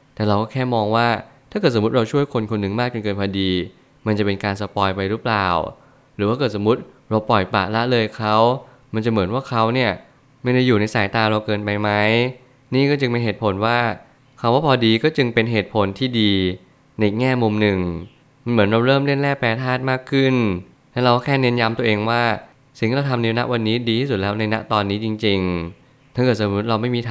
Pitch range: 105-125 Hz